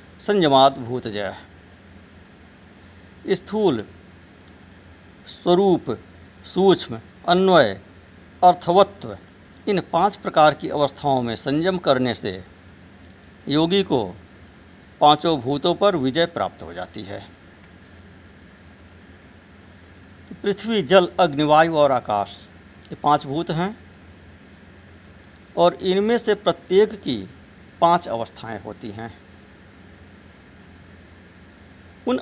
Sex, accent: male, native